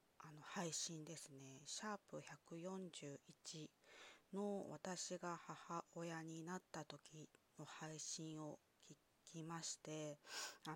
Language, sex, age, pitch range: Japanese, female, 20-39, 145-175 Hz